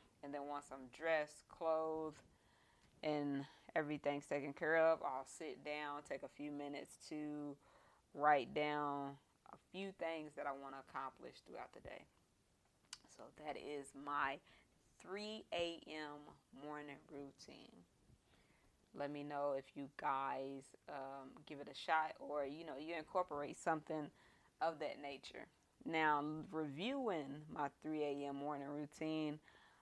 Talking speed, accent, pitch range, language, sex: 135 wpm, American, 145-165 Hz, English, female